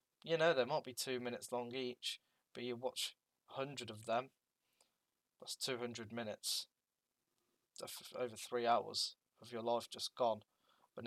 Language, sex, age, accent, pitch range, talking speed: English, male, 10-29, British, 110-125 Hz, 150 wpm